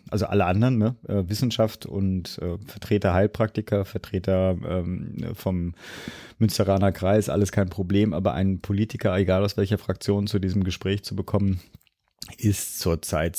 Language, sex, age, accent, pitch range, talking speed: German, male, 30-49, German, 95-105 Hz, 130 wpm